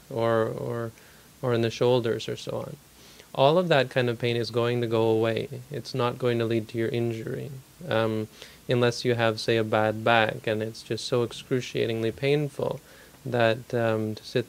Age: 20-39